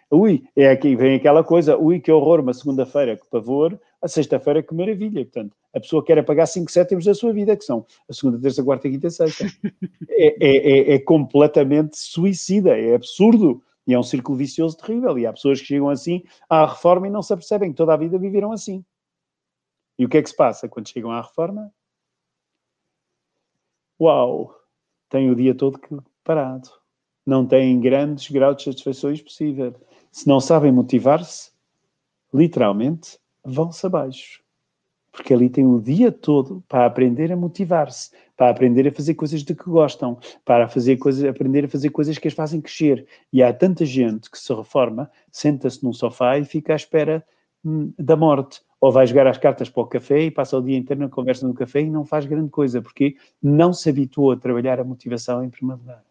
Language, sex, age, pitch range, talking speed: Portuguese, male, 40-59, 130-165 Hz, 185 wpm